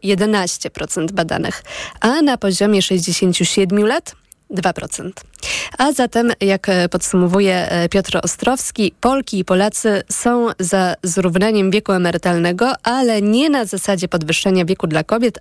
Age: 20-39